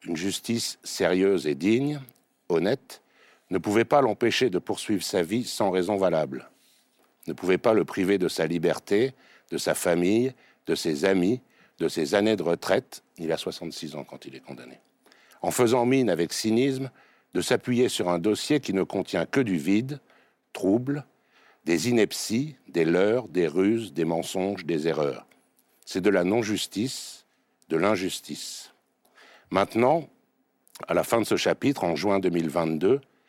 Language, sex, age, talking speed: French, male, 60-79, 155 wpm